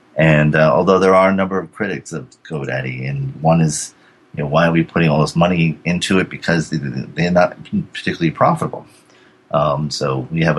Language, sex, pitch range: English, male, 70-80 Hz